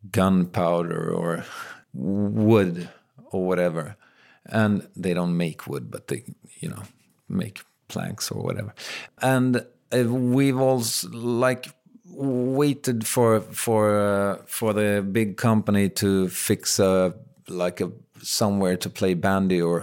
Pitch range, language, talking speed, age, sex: 100-120 Hz, English, 120 wpm, 50-69, male